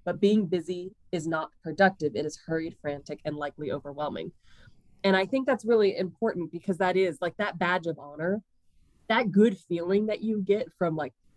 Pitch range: 155-205 Hz